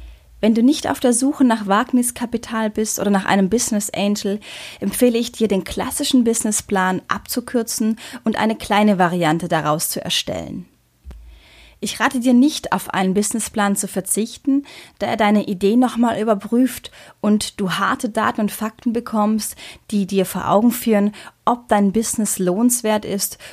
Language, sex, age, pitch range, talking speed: German, female, 30-49, 180-225 Hz, 155 wpm